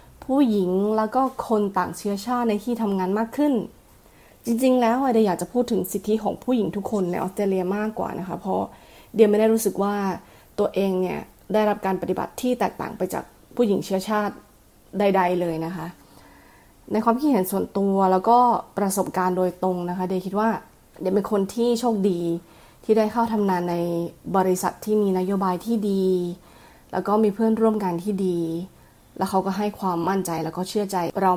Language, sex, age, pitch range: Thai, female, 20-39, 180-215 Hz